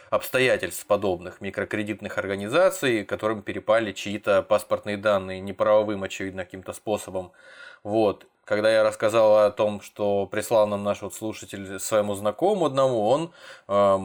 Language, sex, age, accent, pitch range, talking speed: Russian, male, 20-39, native, 100-110 Hz, 130 wpm